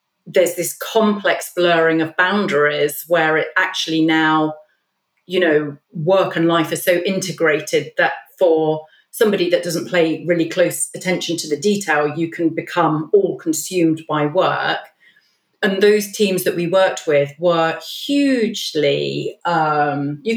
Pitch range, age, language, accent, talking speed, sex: 160-195 Hz, 40-59, English, British, 135 wpm, female